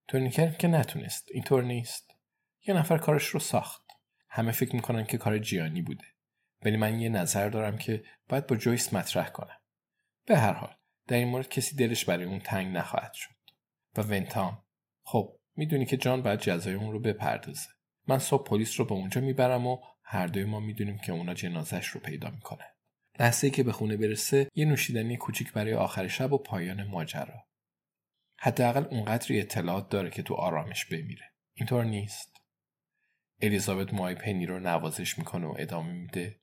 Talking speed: 170 wpm